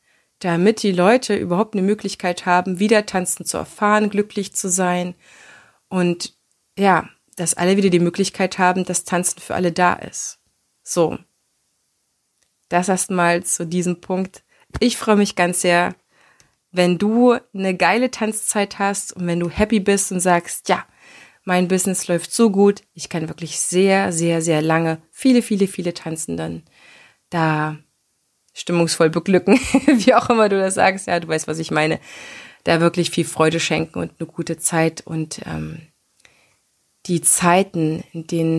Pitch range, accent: 160-195 Hz, German